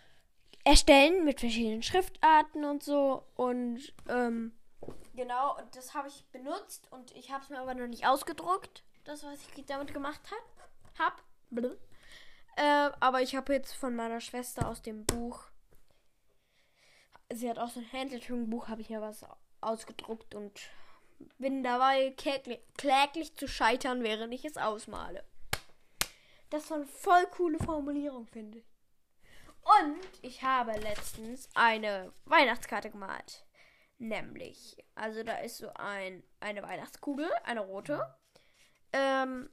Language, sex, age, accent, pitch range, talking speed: German, female, 10-29, German, 230-295 Hz, 135 wpm